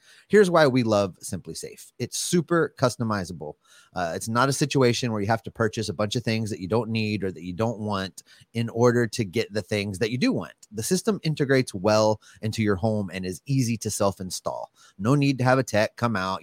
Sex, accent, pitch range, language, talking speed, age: male, American, 105-135 Hz, English, 225 wpm, 30-49